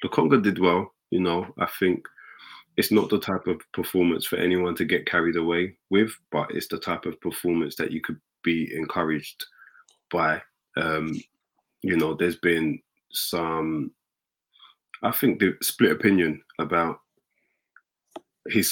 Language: English